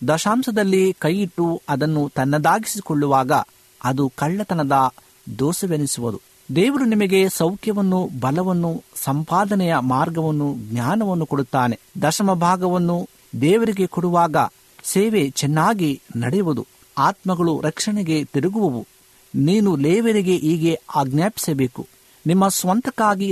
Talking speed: 80 wpm